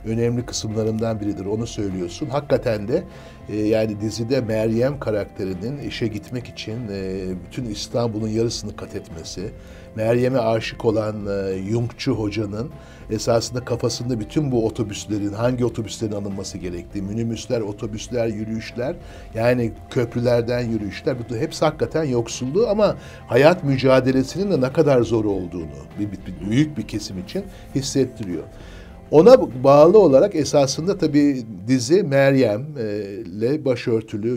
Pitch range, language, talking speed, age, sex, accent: 105-130 Hz, Turkish, 125 wpm, 60-79, male, native